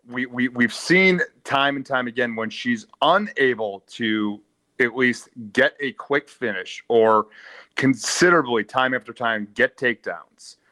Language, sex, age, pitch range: English, male, 30-49, 110-145 Hz